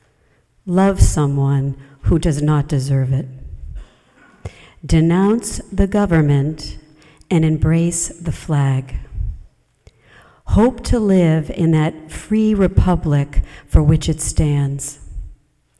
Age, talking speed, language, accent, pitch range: 50-69, 95 wpm, English, American, 140-180 Hz